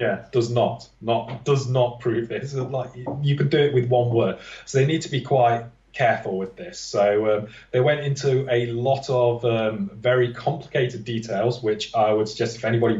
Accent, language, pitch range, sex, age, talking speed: British, English, 110-125 Hz, male, 20-39, 205 wpm